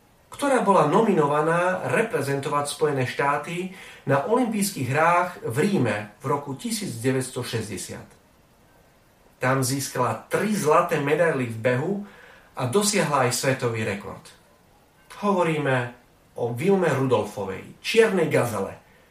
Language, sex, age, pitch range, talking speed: Slovak, male, 40-59, 130-185 Hz, 100 wpm